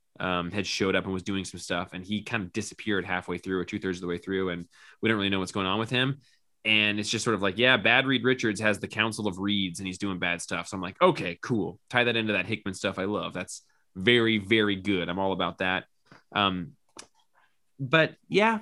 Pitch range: 100-140 Hz